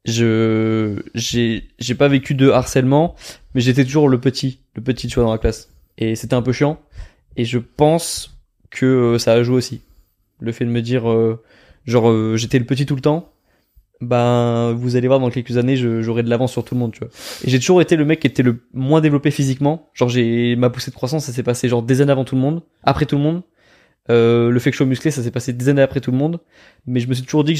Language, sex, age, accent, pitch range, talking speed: French, male, 20-39, French, 115-135 Hz, 250 wpm